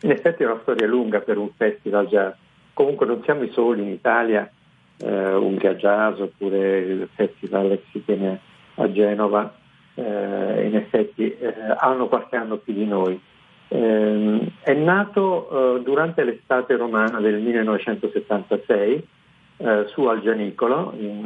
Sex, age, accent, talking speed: male, 50-69, native, 145 wpm